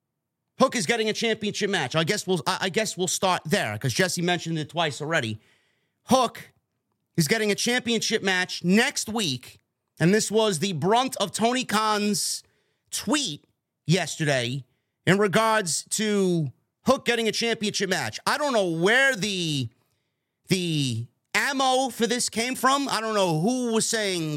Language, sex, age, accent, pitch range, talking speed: English, male, 30-49, American, 160-225 Hz, 155 wpm